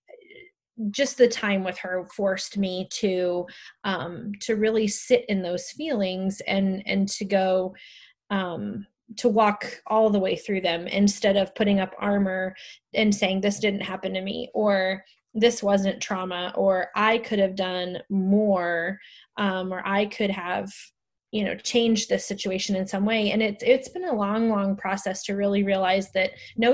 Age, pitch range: 20-39, 185-215 Hz